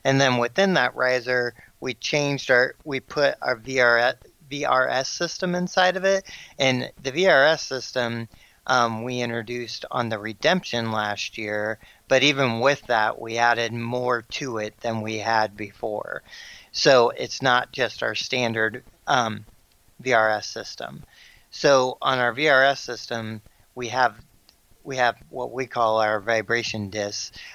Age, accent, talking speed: 40-59, American, 145 wpm